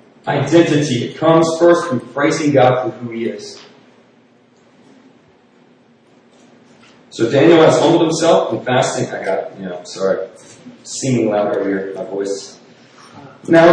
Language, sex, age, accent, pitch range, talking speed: English, male, 40-59, American, 130-175 Hz, 135 wpm